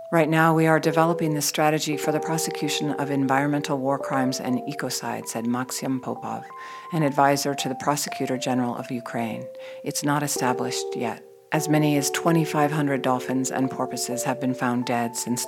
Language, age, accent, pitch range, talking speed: English, 50-69, American, 130-155 Hz, 165 wpm